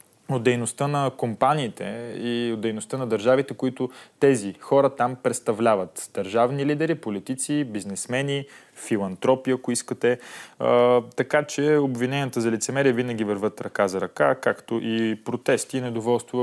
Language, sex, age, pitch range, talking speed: Bulgarian, male, 20-39, 110-130 Hz, 135 wpm